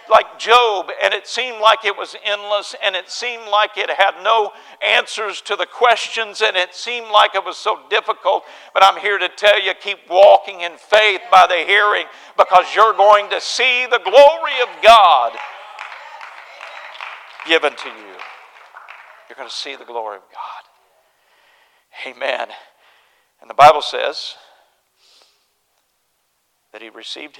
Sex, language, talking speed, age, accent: male, English, 150 wpm, 50-69, American